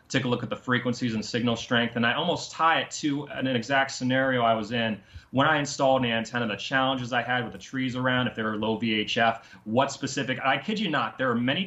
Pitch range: 110-135 Hz